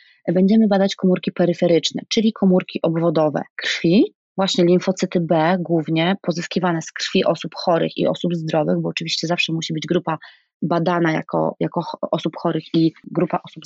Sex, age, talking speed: female, 20-39, 150 wpm